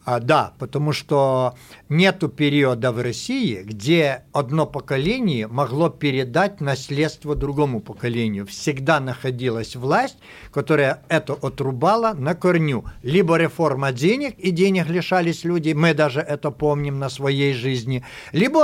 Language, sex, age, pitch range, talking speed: Russian, male, 60-79, 135-180 Hz, 125 wpm